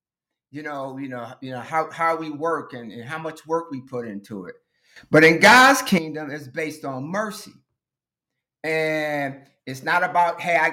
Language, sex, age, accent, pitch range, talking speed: English, male, 50-69, American, 145-190 Hz, 185 wpm